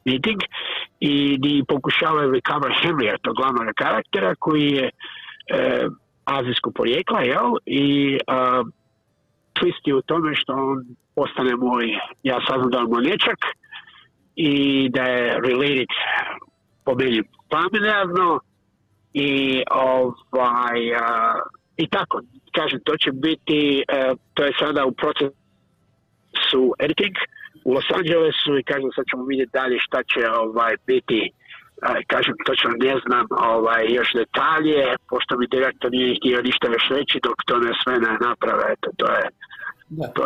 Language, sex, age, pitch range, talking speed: Croatian, male, 50-69, 125-145 Hz, 125 wpm